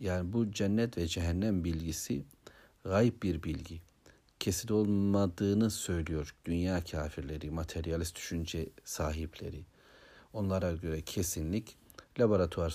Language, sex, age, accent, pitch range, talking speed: Turkish, male, 60-79, native, 85-105 Hz, 100 wpm